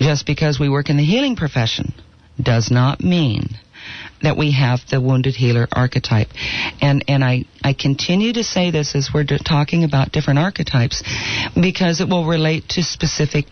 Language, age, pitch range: English, 50-69, 130-180 Hz